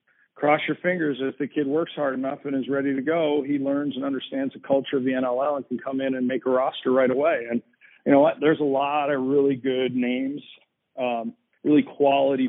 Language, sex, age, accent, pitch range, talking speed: English, male, 40-59, American, 125-140 Hz, 225 wpm